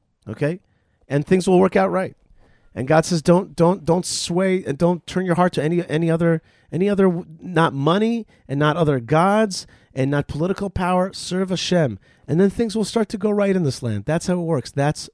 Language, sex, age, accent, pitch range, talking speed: English, male, 40-59, American, 115-180 Hz, 210 wpm